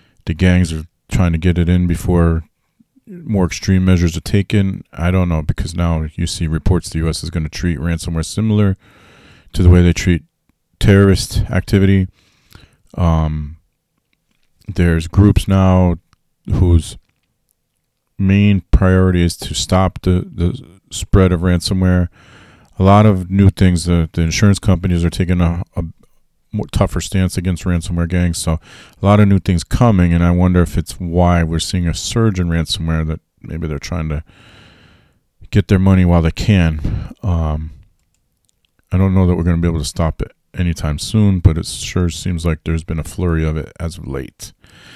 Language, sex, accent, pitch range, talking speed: English, male, American, 85-100 Hz, 175 wpm